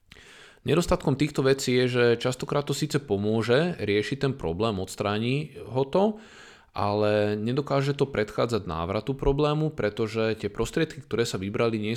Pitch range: 105-135 Hz